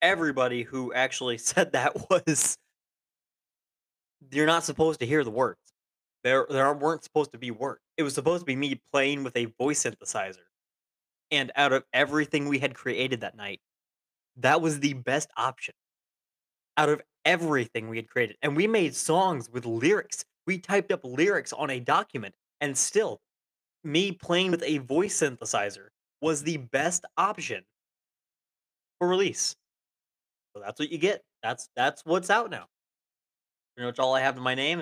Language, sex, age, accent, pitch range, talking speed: English, male, 20-39, American, 125-165 Hz, 165 wpm